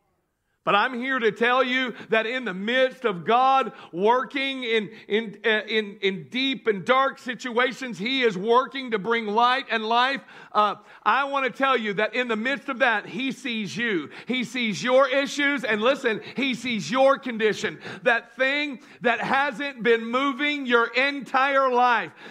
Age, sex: 50-69, male